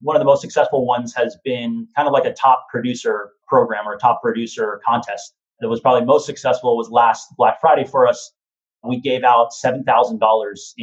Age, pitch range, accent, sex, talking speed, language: 30-49, 115-150 Hz, American, male, 195 wpm, English